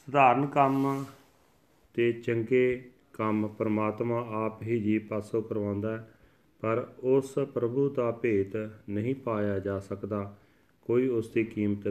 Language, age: Punjabi, 40-59